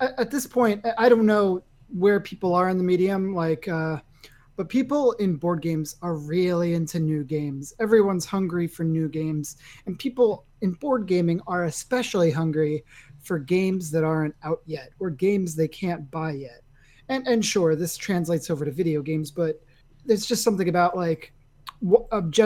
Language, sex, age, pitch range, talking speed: English, male, 30-49, 155-195 Hz, 175 wpm